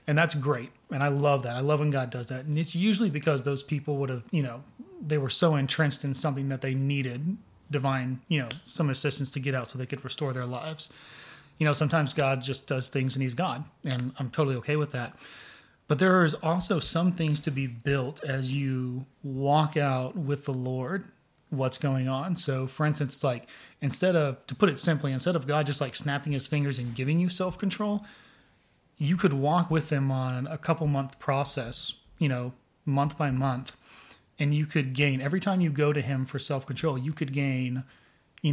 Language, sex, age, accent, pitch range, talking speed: English, male, 30-49, American, 135-155 Hz, 205 wpm